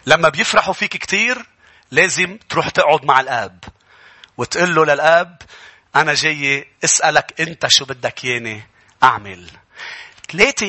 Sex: male